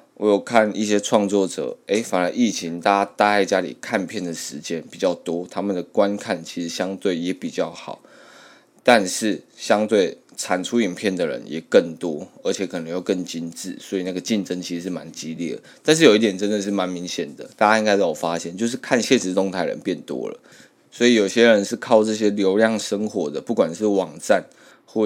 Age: 20-39